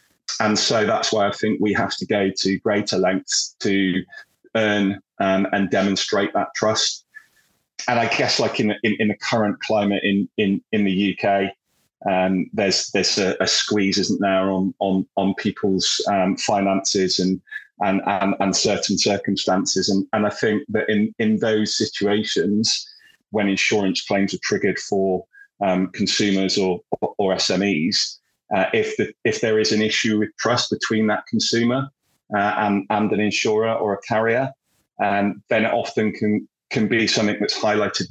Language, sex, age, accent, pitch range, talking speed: English, male, 30-49, British, 95-105 Hz, 165 wpm